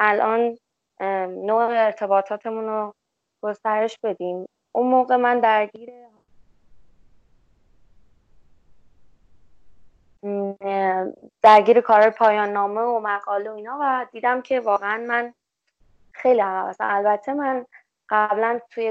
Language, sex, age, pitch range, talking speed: Persian, female, 20-39, 200-250 Hz, 90 wpm